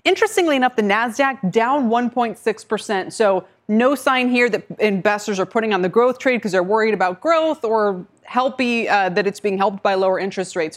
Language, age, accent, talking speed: English, 20-39, American, 190 wpm